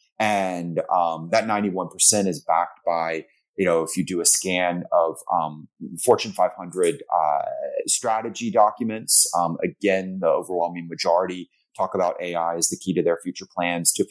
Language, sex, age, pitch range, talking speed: English, male, 30-49, 85-115 Hz, 160 wpm